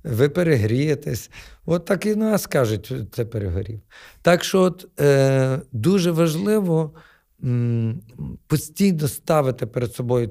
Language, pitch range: Ukrainian, 120-160 Hz